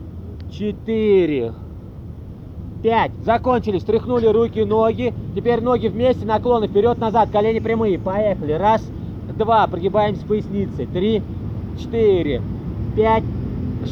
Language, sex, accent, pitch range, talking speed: Russian, male, native, 185-220 Hz, 90 wpm